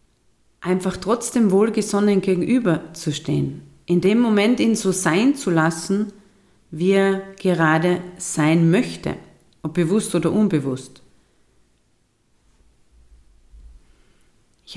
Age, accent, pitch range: 40-59, German, 160-205 Hz